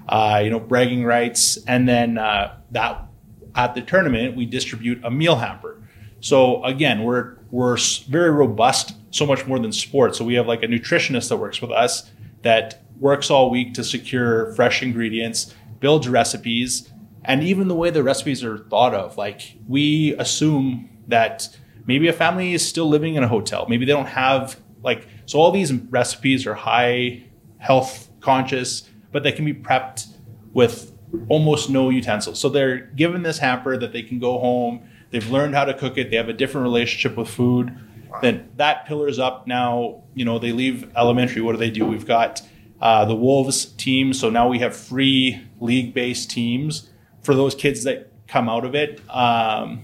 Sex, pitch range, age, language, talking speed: male, 115-135 Hz, 30-49, English, 185 wpm